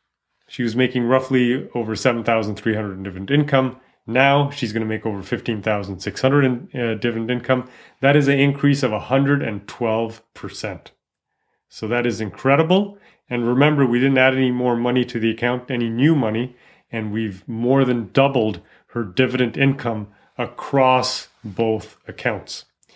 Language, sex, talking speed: English, male, 145 wpm